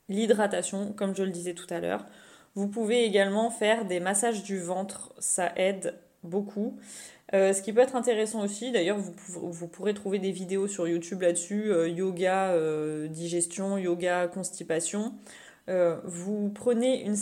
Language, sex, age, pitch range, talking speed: French, female, 20-39, 180-220 Hz, 160 wpm